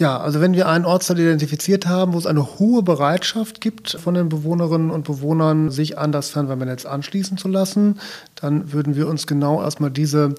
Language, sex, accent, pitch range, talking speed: German, male, German, 145-165 Hz, 190 wpm